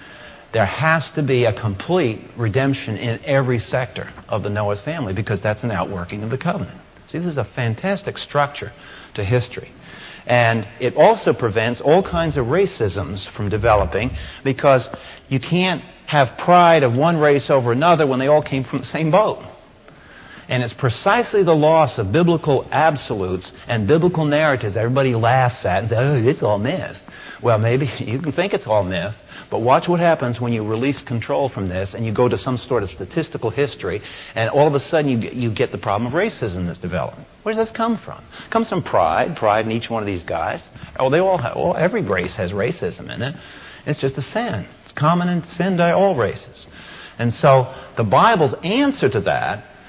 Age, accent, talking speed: 50-69, American, 195 wpm